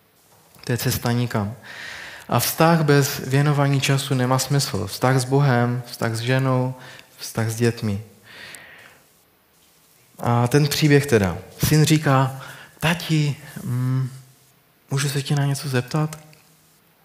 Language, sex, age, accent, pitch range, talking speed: Czech, male, 20-39, native, 120-145 Hz, 115 wpm